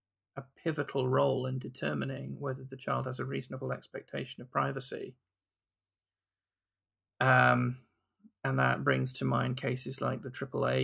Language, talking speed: English, 125 wpm